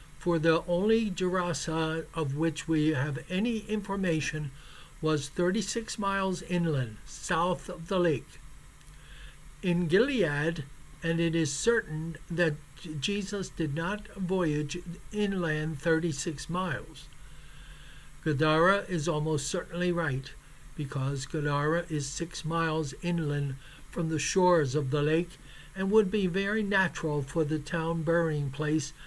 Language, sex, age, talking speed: English, male, 60-79, 120 wpm